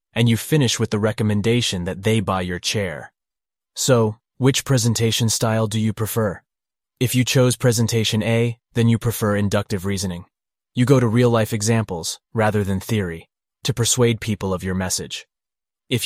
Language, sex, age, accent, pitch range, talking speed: English, male, 20-39, American, 105-125 Hz, 160 wpm